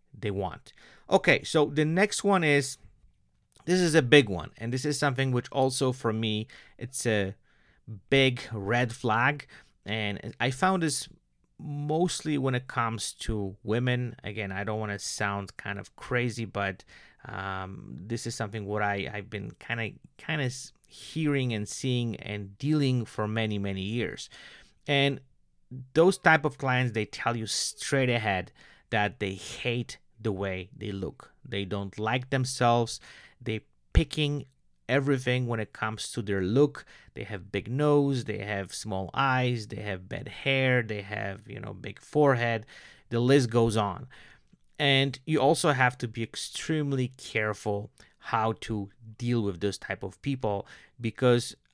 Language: English